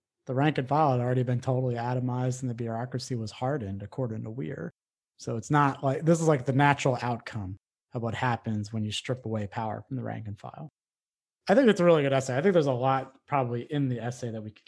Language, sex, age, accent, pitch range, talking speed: English, male, 30-49, American, 120-140 Hz, 240 wpm